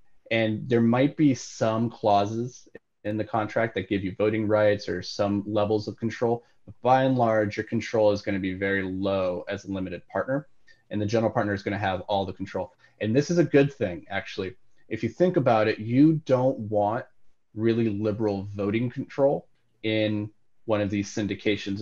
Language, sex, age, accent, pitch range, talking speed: English, male, 30-49, American, 100-120 Hz, 190 wpm